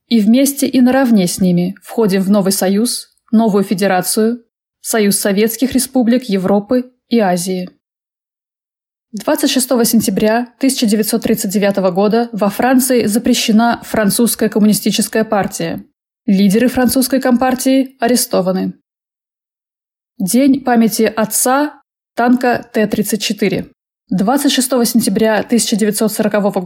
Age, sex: 20-39, female